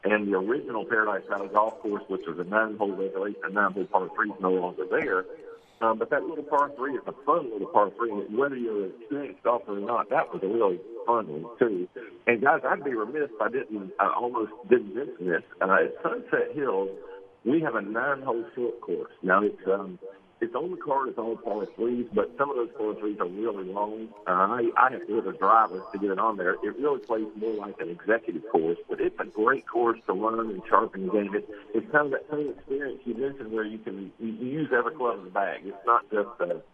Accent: American